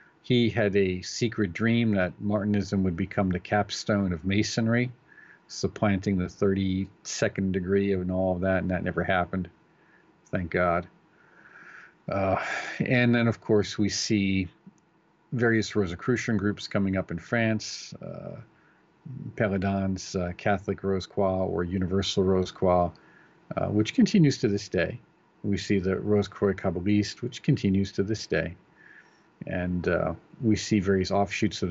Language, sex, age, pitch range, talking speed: English, male, 50-69, 95-110 Hz, 140 wpm